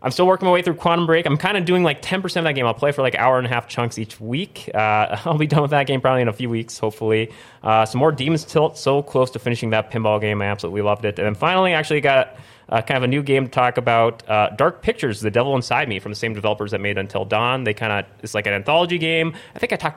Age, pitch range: 20-39, 110-140 Hz